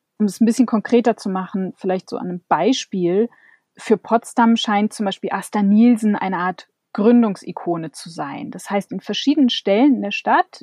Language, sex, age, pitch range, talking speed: German, female, 30-49, 190-240 Hz, 175 wpm